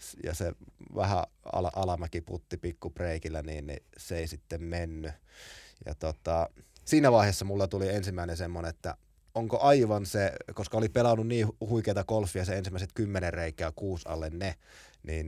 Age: 30-49